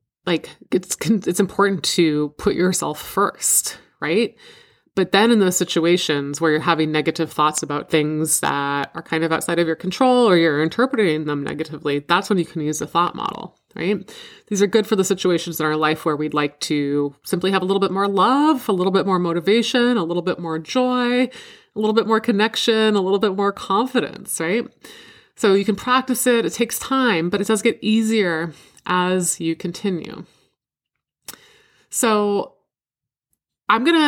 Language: English